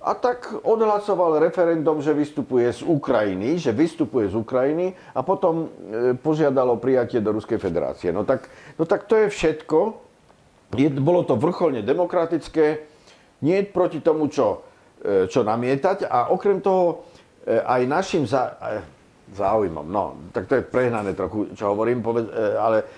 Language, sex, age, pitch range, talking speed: Slovak, male, 50-69, 125-180 Hz, 135 wpm